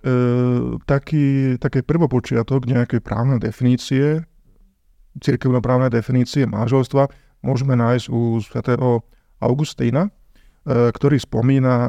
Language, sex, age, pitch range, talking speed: Slovak, male, 40-59, 120-140 Hz, 90 wpm